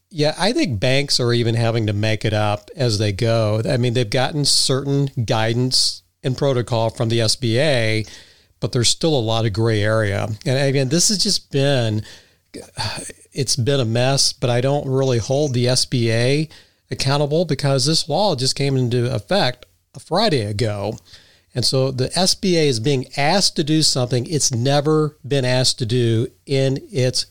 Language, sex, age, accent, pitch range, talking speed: English, male, 50-69, American, 110-140 Hz, 175 wpm